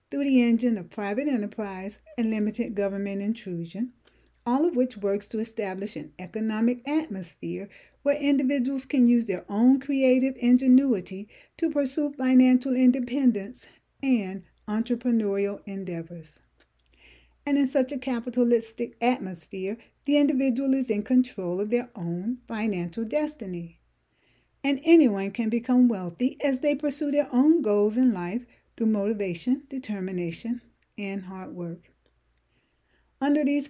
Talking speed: 125 wpm